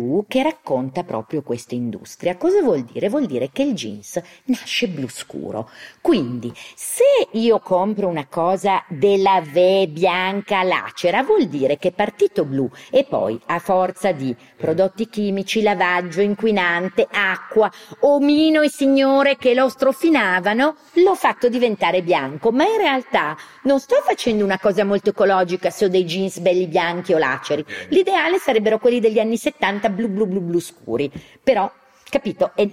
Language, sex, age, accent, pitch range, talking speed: Italian, female, 40-59, native, 155-230 Hz, 155 wpm